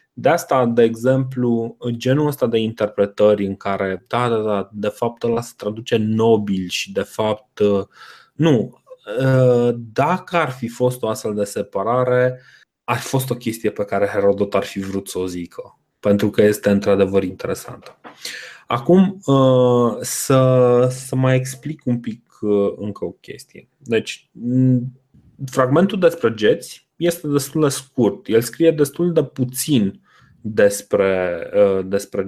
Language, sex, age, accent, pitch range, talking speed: Romanian, male, 20-39, native, 105-135 Hz, 135 wpm